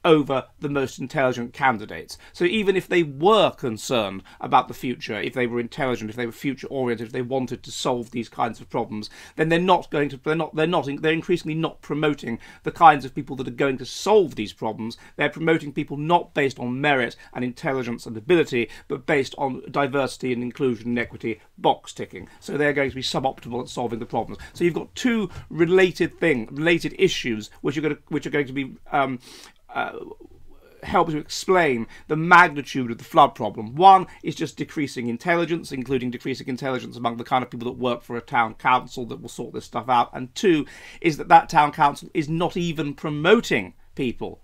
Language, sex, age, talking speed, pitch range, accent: English, male, 40-59, 205 wpm, 120-155 Hz, British